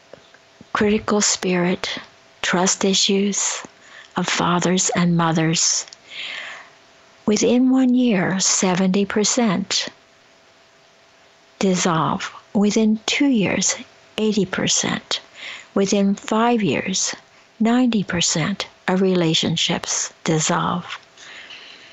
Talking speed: 65 wpm